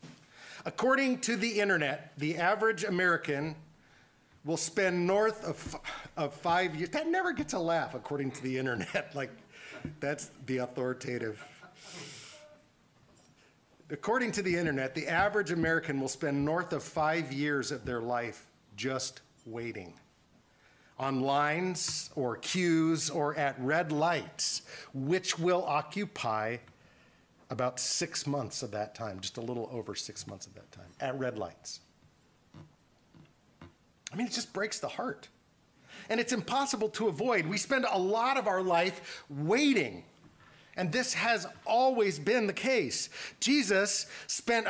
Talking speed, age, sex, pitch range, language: 140 wpm, 50-69, male, 135-200 Hz, English